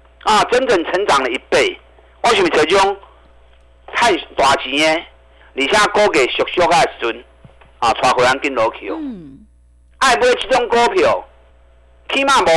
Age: 50-69